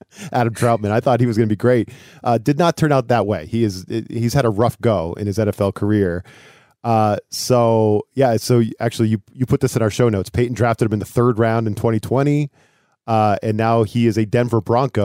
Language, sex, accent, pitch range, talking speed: English, male, American, 110-135 Hz, 230 wpm